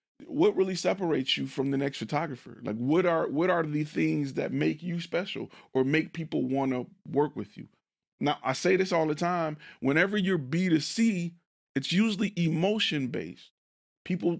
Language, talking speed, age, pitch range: English, 185 wpm, 40-59, 120-165 Hz